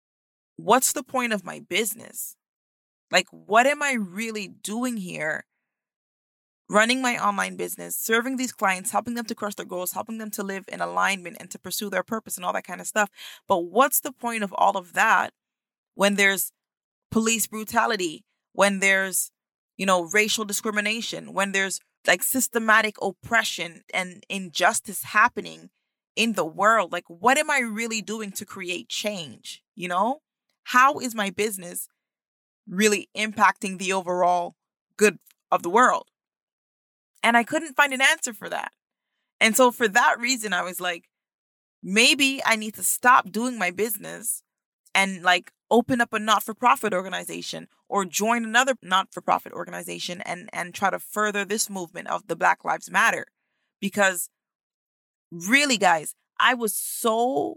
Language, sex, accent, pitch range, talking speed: English, female, American, 190-235 Hz, 155 wpm